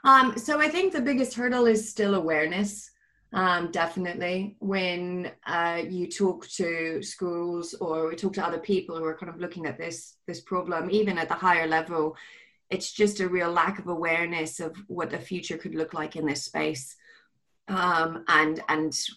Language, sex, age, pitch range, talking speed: English, female, 30-49, 160-190 Hz, 180 wpm